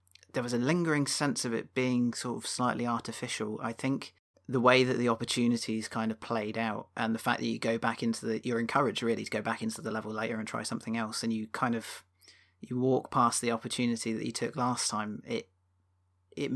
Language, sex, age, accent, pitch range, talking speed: English, male, 30-49, British, 110-125 Hz, 225 wpm